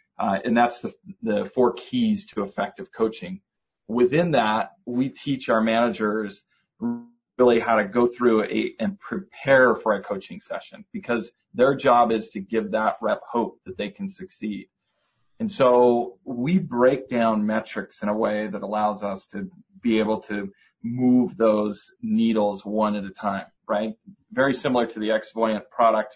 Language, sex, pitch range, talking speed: English, male, 105-130 Hz, 165 wpm